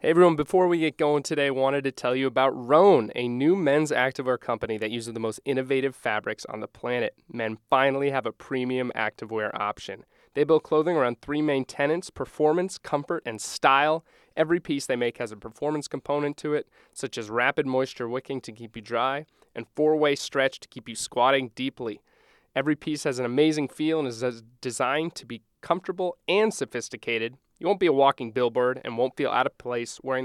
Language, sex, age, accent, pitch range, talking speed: English, male, 20-39, American, 125-150 Hz, 200 wpm